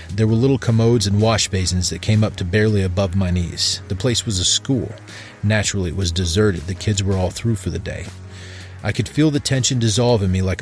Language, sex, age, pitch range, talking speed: English, male, 30-49, 95-115 Hz, 230 wpm